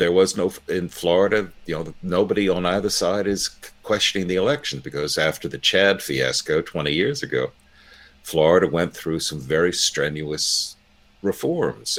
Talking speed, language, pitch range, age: 150 wpm, English, 70-95 Hz, 50-69